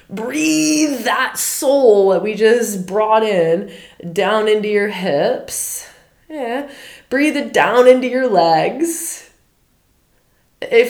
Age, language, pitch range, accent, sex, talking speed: 20-39, English, 200-290 Hz, American, female, 110 wpm